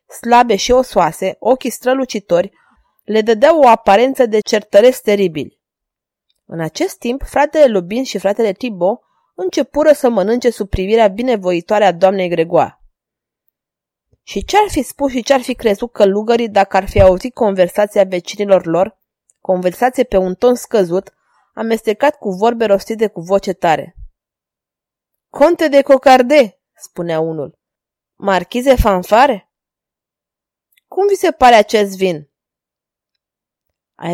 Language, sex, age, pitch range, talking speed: Romanian, female, 20-39, 185-245 Hz, 125 wpm